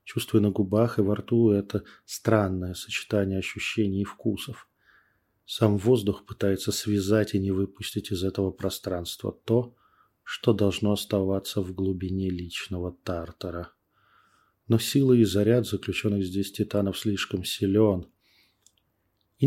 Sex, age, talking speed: male, 20-39, 125 wpm